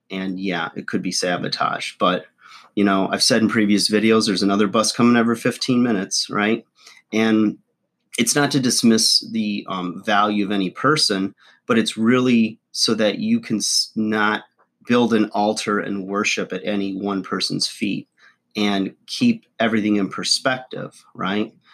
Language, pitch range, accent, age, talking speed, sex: English, 95-115 Hz, American, 30-49, 155 wpm, male